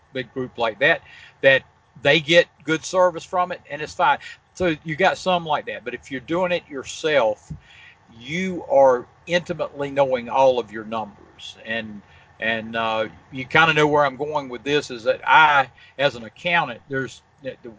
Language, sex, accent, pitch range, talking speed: English, male, American, 125-165 Hz, 180 wpm